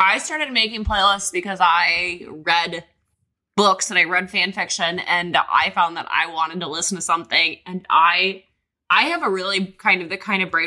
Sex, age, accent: female, 20-39, American